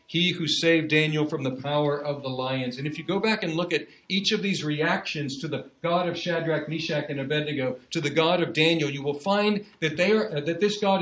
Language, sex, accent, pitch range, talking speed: English, male, American, 135-165 Hz, 240 wpm